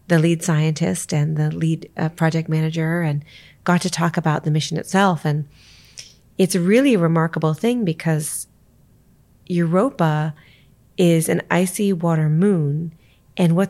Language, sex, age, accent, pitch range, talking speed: English, female, 30-49, American, 150-180 Hz, 140 wpm